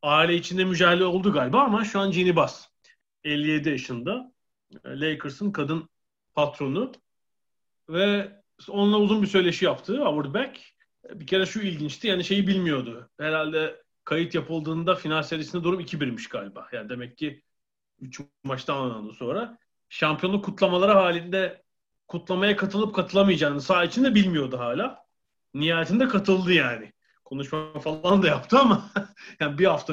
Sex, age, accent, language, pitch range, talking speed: male, 40-59, native, Turkish, 140-190 Hz, 130 wpm